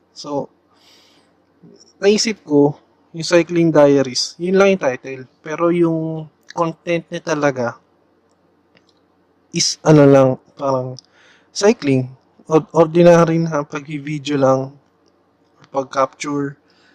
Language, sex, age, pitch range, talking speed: Filipino, male, 20-39, 130-155 Hz, 85 wpm